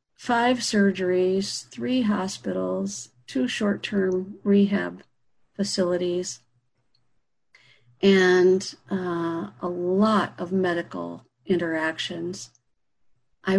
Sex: female